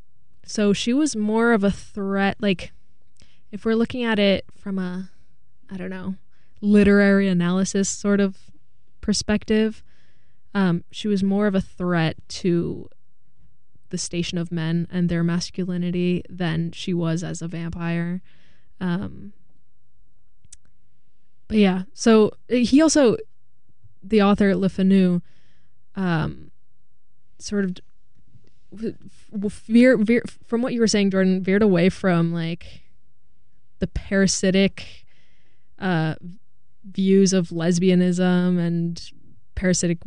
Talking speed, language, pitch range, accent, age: 110 wpm, English, 175-205 Hz, American, 10-29